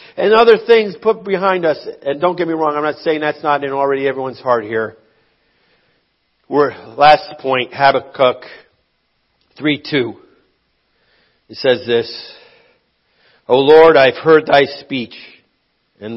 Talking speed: 135 wpm